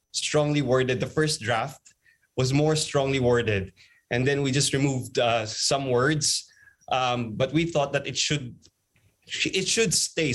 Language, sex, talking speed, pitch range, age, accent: English, male, 155 wpm, 115-155 Hz, 20-39, Filipino